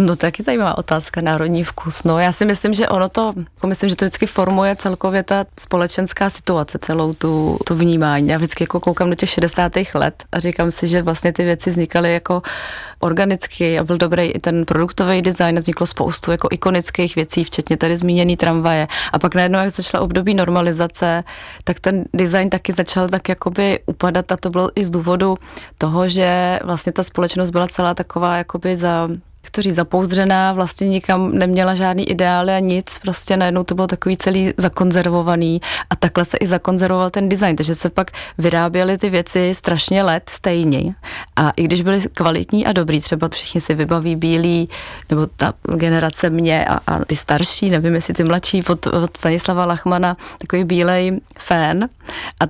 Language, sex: Czech, female